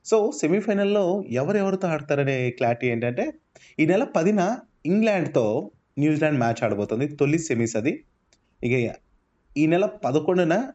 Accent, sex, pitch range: native, male, 110-145 Hz